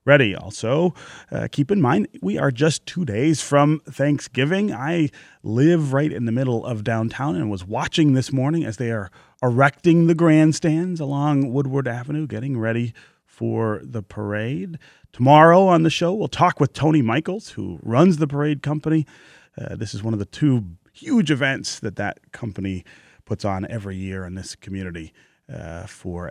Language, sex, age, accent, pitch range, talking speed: English, male, 30-49, American, 105-155 Hz, 170 wpm